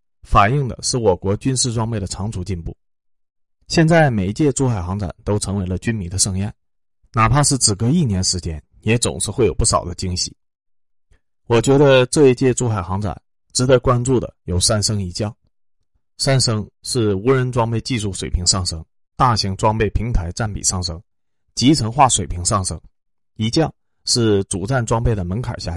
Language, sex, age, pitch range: Chinese, male, 30-49, 95-125 Hz